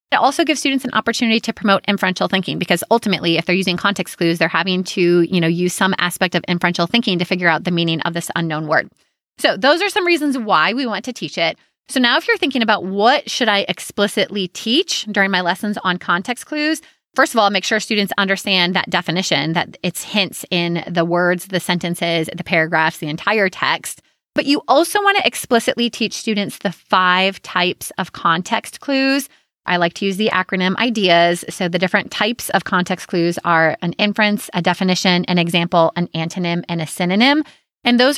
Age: 30-49